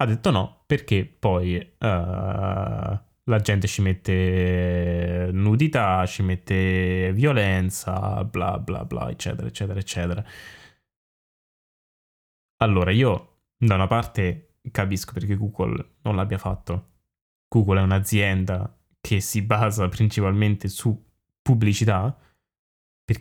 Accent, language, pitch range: native, Italian, 95-115 Hz